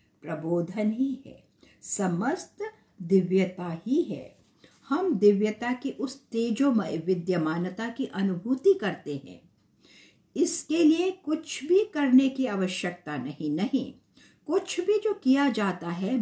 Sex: female